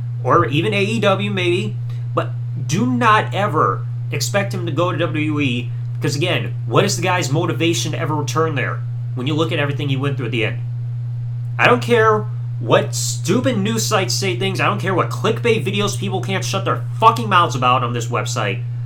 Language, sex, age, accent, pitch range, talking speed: English, male, 30-49, American, 120-125 Hz, 195 wpm